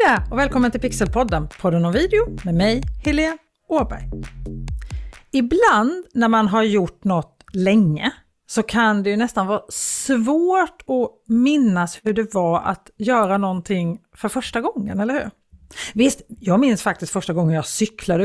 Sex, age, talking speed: female, 40-59, 150 wpm